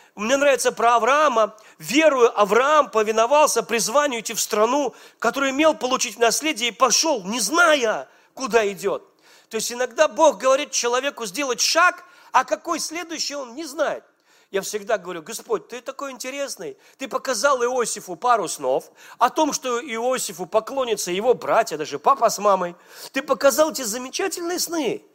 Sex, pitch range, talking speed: male, 230-315 Hz, 150 wpm